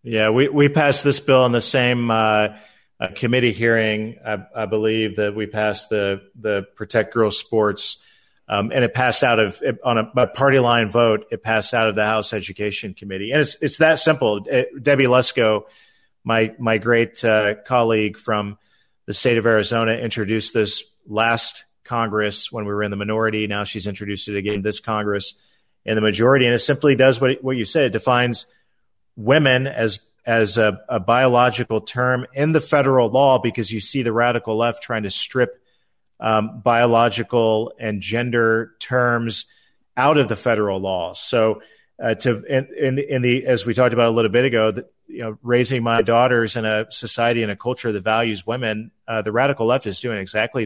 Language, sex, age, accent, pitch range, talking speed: English, male, 40-59, American, 110-125 Hz, 185 wpm